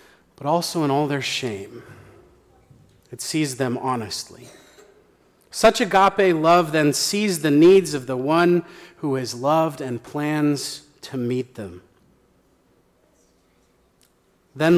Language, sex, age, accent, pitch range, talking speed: English, male, 40-59, American, 135-175 Hz, 120 wpm